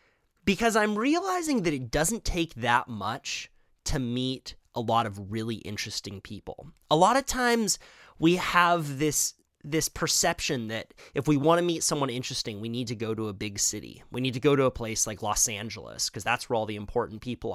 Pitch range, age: 120-170 Hz, 30-49